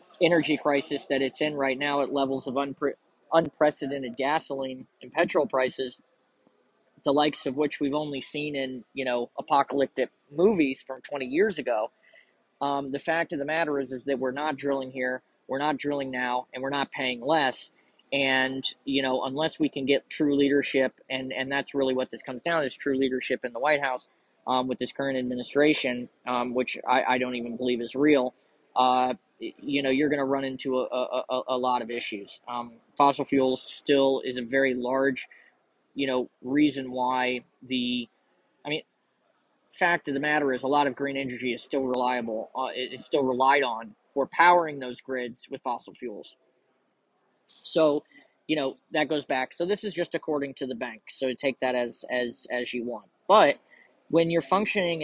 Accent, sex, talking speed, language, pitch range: American, male, 190 wpm, English, 125-145 Hz